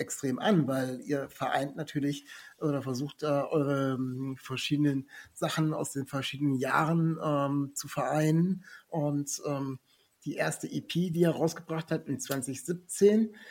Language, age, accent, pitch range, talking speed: German, 60-79, German, 140-160 Hz, 135 wpm